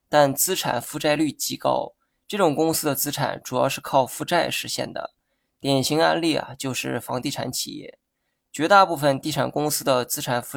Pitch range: 130-155 Hz